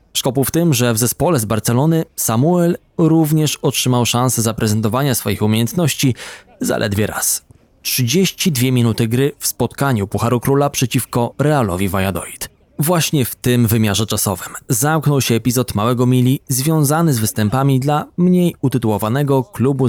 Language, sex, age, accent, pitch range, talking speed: Polish, male, 20-39, native, 110-150 Hz, 135 wpm